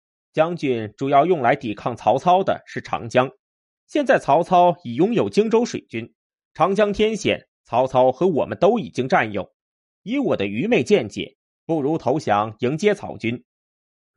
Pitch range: 115-185 Hz